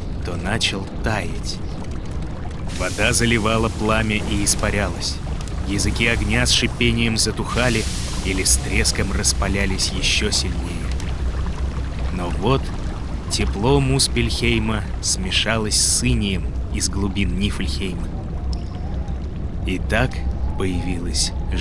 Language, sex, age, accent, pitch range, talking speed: Russian, male, 20-39, native, 75-100 Hz, 90 wpm